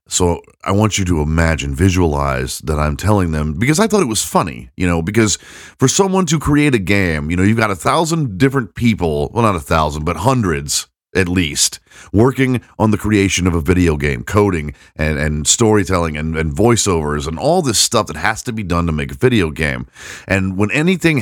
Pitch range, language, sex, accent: 85-125 Hz, English, male, American